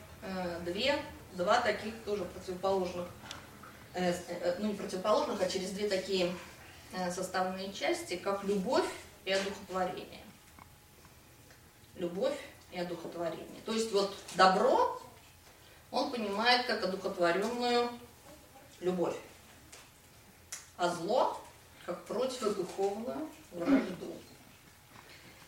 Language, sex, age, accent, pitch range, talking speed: Russian, female, 20-39, native, 180-225 Hz, 80 wpm